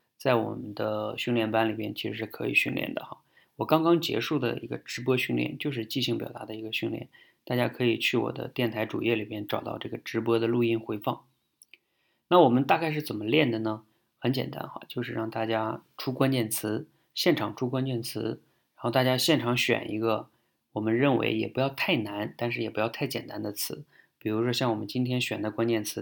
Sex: male